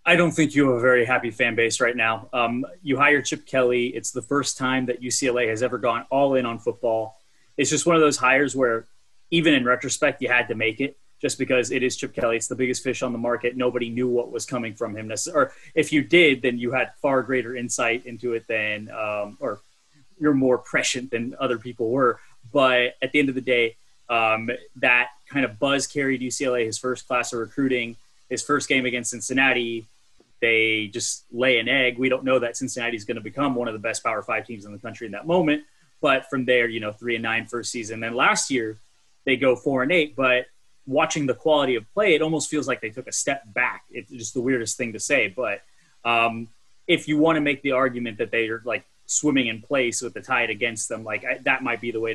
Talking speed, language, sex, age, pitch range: 235 wpm, English, male, 20-39, 115-135 Hz